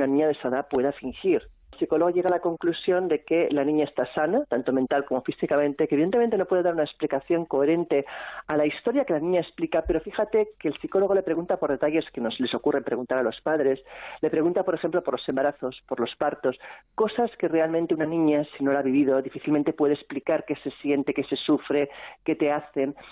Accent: Spanish